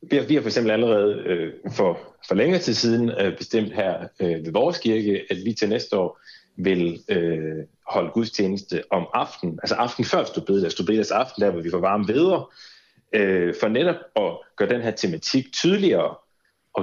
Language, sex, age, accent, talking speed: Danish, male, 30-49, native, 160 wpm